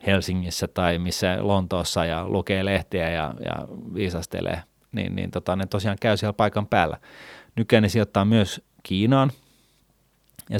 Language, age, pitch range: Finnish, 30-49, 90-105 Hz